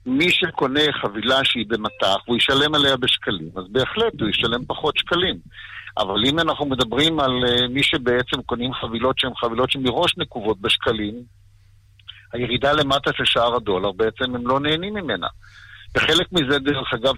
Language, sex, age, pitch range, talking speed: Hebrew, male, 50-69, 115-140 Hz, 150 wpm